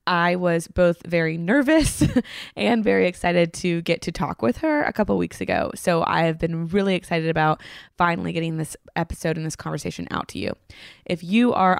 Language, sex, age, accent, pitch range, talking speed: English, female, 20-39, American, 160-190 Hz, 195 wpm